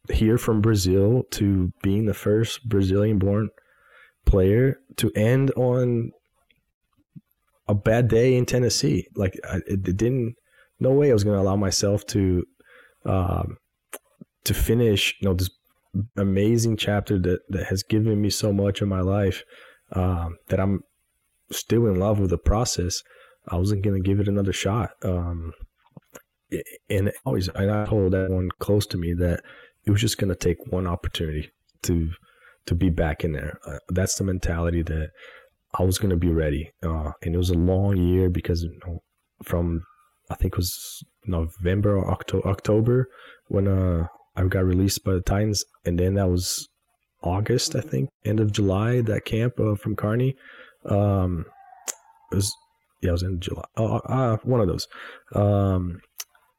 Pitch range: 90-105 Hz